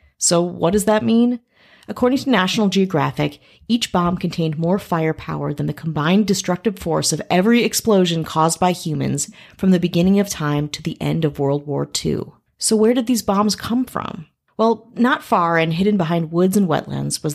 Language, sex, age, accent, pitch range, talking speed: English, female, 30-49, American, 150-200 Hz, 185 wpm